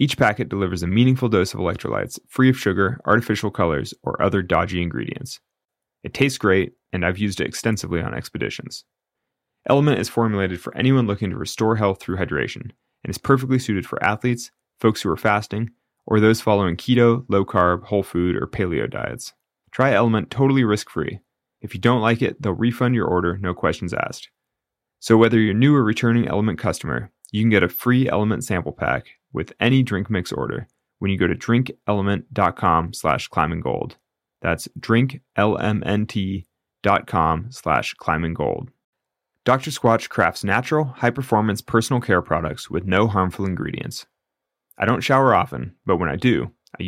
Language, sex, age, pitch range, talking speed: English, male, 30-49, 95-120 Hz, 165 wpm